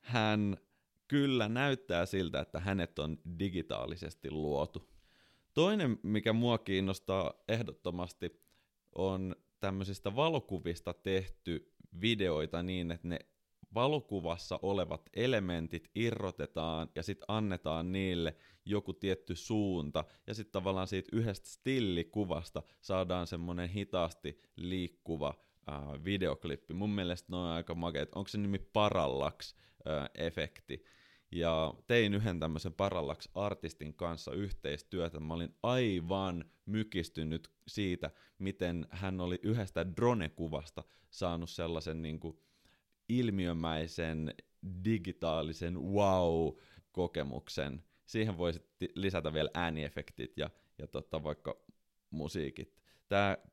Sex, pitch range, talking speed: male, 80-100 Hz, 105 wpm